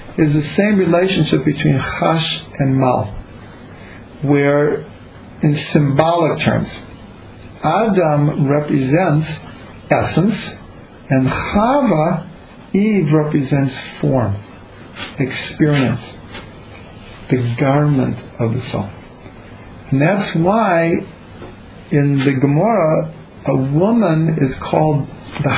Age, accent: 50-69, American